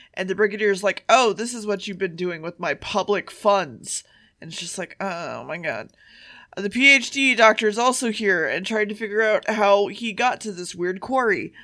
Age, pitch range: 20-39, 190-245 Hz